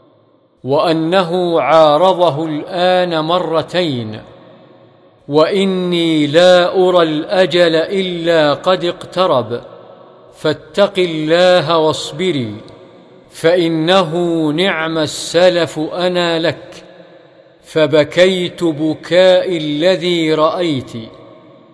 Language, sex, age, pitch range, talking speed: Arabic, male, 50-69, 155-180 Hz, 65 wpm